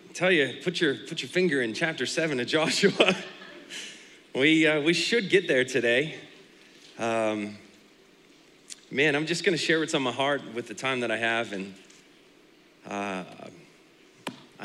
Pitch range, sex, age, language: 105-130 Hz, male, 30-49, English